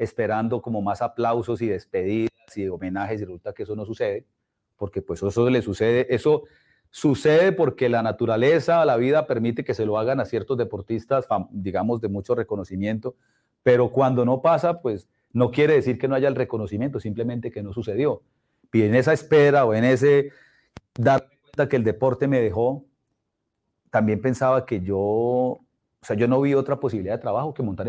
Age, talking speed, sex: 40-59, 180 wpm, male